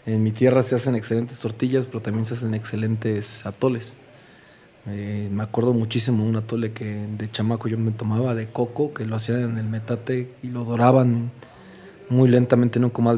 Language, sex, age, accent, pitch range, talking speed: Spanish, male, 30-49, Mexican, 105-120 Hz, 190 wpm